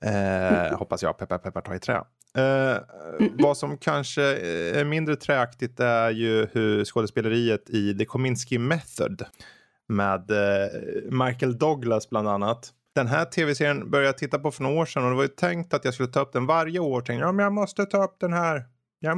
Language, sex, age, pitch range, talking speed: Swedish, male, 20-39, 115-145 Hz, 190 wpm